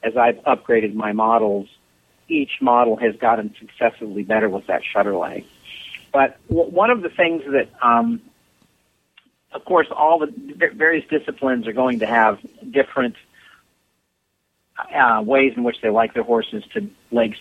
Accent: American